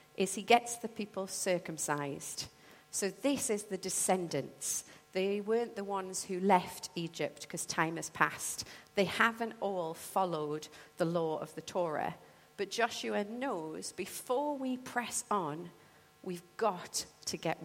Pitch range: 155-210 Hz